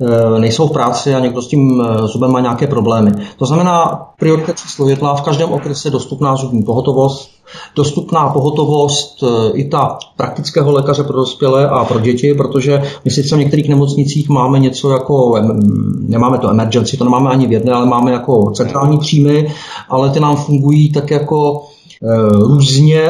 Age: 40-59